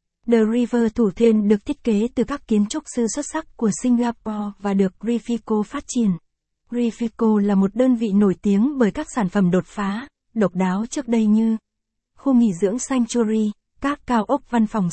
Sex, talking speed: female, 195 wpm